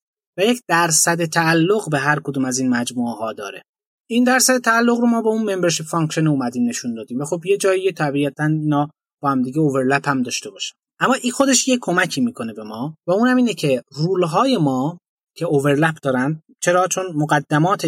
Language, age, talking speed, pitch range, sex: Persian, 30-49, 200 wpm, 145-230 Hz, male